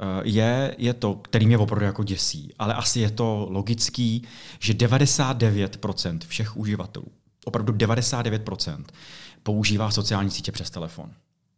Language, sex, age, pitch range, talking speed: Czech, male, 30-49, 95-125 Hz, 125 wpm